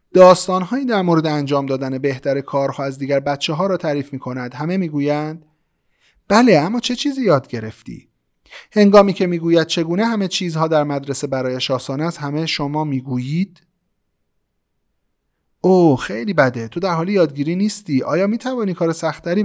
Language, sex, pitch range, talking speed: Persian, male, 135-190 Hz, 155 wpm